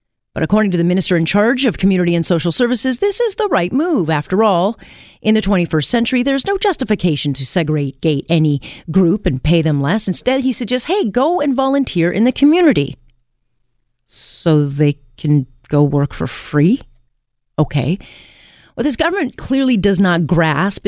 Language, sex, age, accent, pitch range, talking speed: English, female, 40-59, American, 155-215 Hz, 170 wpm